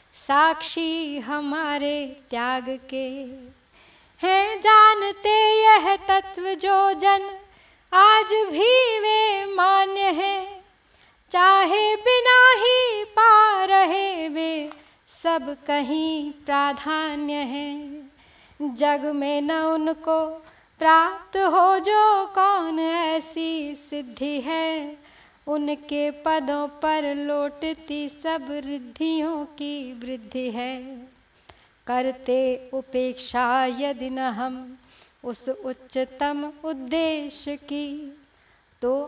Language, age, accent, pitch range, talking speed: Hindi, 20-39, native, 285-390 Hz, 85 wpm